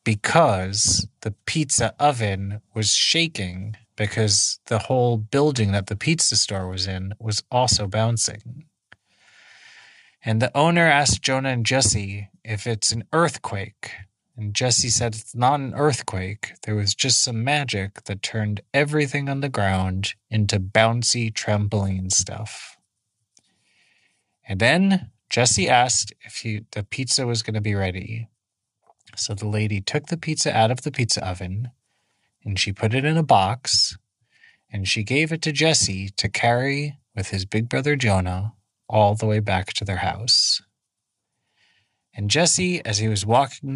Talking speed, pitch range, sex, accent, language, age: 150 wpm, 100-125 Hz, male, American, English, 30-49